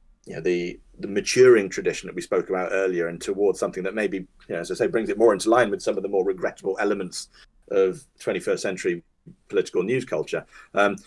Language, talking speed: English, 215 wpm